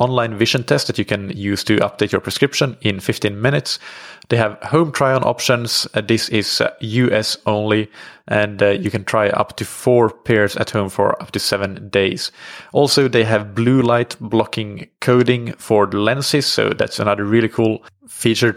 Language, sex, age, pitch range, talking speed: English, male, 20-39, 105-125 Hz, 175 wpm